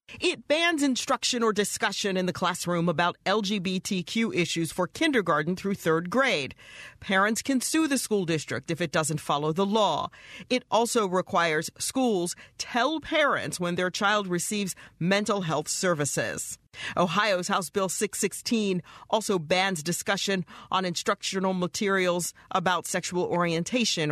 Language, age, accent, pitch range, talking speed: English, 40-59, American, 170-215 Hz, 135 wpm